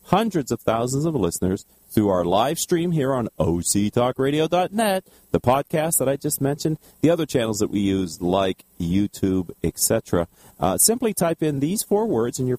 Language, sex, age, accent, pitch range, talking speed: English, male, 40-59, American, 95-130 Hz, 165 wpm